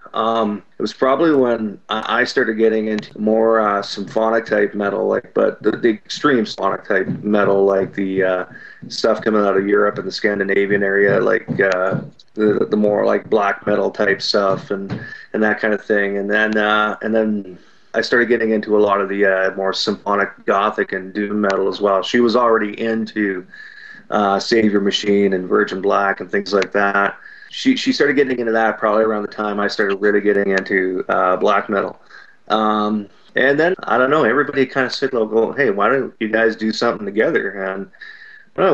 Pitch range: 100-115 Hz